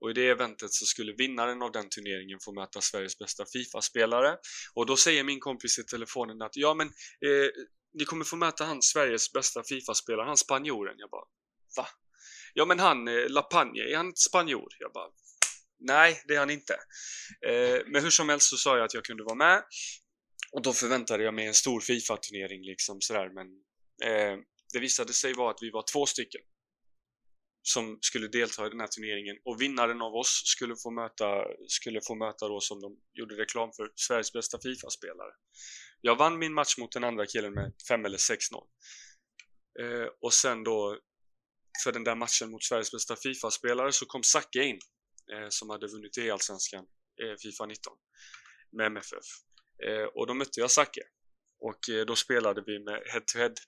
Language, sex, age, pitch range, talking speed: Swedish, male, 20-39, 105-140 Hz, 185 wpm